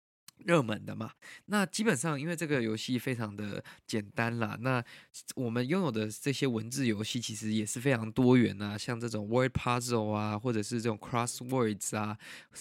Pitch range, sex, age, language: 110-135 Hz, male, 20-39, Chinese